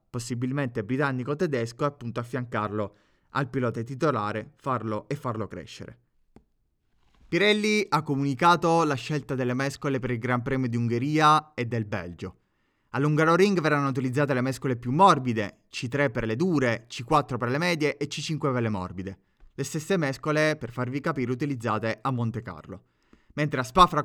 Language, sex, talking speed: Italian, male, 155 wpm